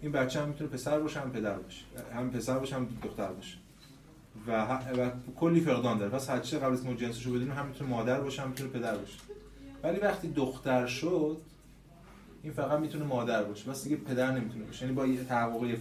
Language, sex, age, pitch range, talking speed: Persian, male, 30-49, 120-165 Hz, 190 wpm